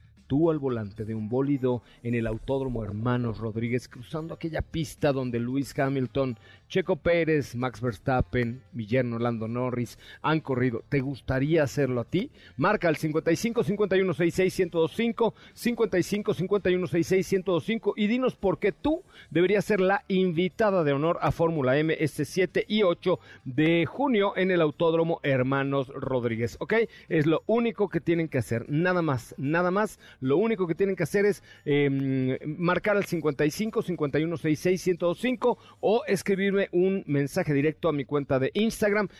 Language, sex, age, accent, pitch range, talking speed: Spanish, male, 40-59, Mexican, 135-190 Hz, 140 wpm